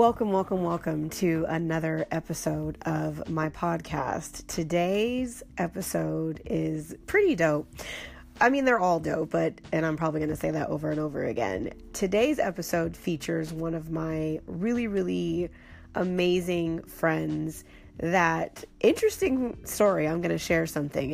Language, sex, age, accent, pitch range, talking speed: English, female, 30-49, American, 160-210 Hz, 140 wpm